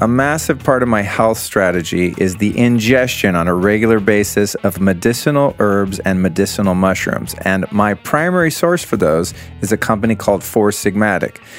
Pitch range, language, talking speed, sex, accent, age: 95-120 Hz, English, 165 wpm, male, American, 40-59